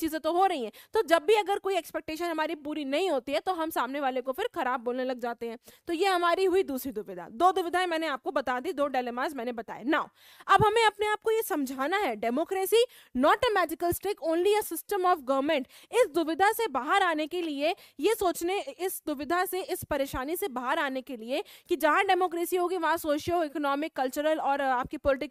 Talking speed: 130 wpm